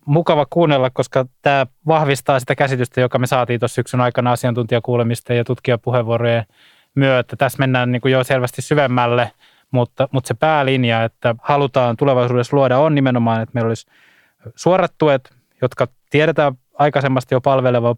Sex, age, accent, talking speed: male, 20-39, native, 145 wpm